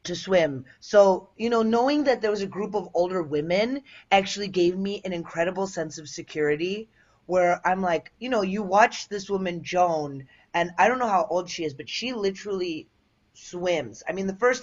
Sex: female